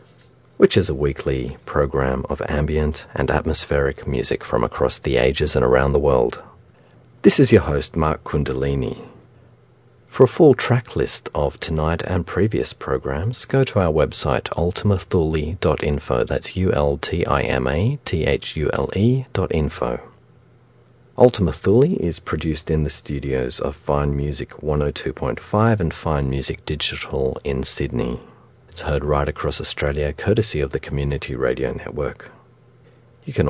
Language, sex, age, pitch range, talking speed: English, male, 40-59, 70-100 Hz, 135 wpm